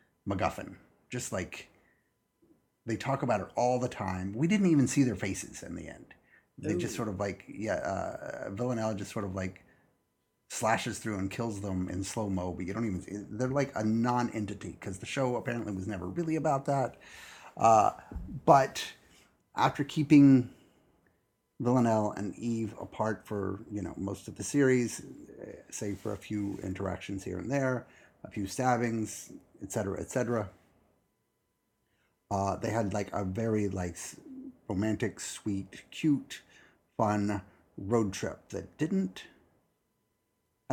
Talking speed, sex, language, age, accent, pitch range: 145 wpm, male, English, 30-49, American, 100-125 Hz